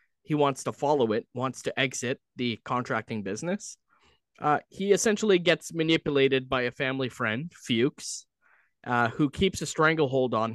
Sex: male